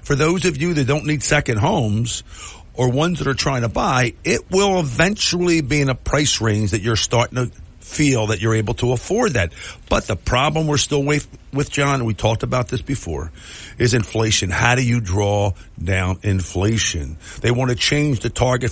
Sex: male